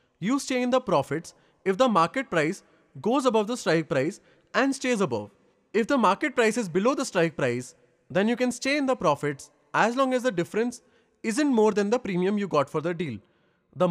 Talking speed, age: 210 wpm, 30-49